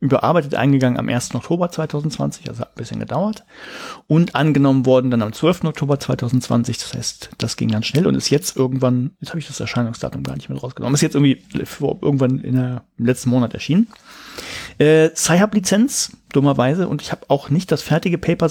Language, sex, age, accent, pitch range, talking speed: German, male, 40-59, German, 125-155 Hz, 195 wpm